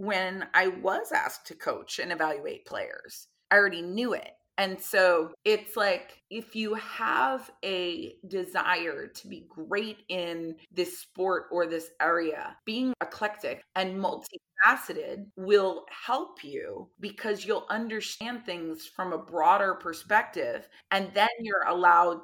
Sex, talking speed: female, 140 wpm